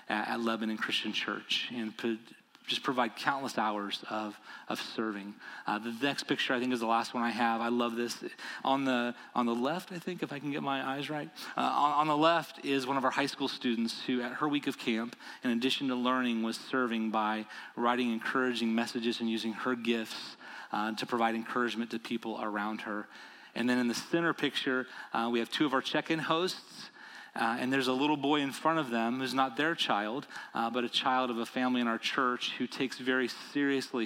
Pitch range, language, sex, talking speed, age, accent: 115-135 Hz, English, male, 215 wpm, 30-49, American